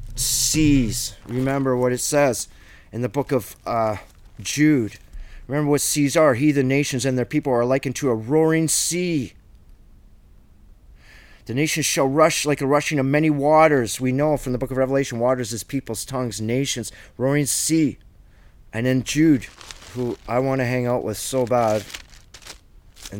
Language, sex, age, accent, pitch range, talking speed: English, male, 30-49, American, 110-150 Hz, 165 wpm